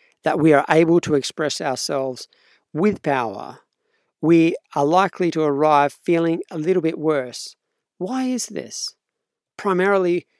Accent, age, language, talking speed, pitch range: Australian, 50-69, English, 135 wpm, 150-185 Hz